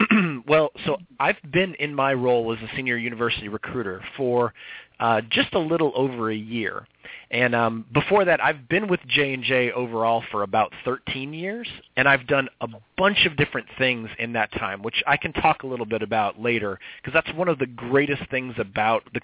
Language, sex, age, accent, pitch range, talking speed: English, male, 30-49, American, 115-155 Hz, 195 wpm